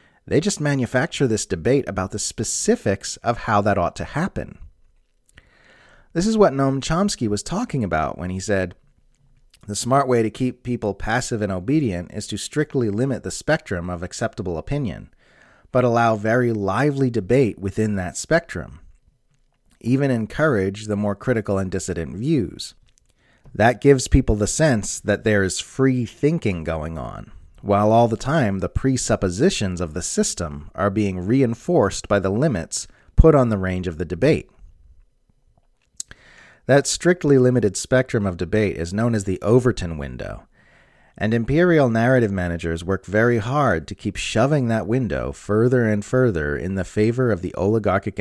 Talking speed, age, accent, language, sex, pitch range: 155 wpm, 30-49, American, English, male, 90-125 Hz